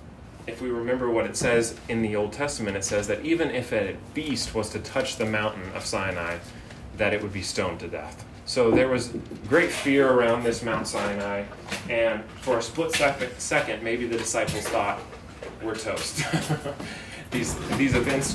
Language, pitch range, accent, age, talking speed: English, 100-120 Hz, American, 30-49, 175 wpm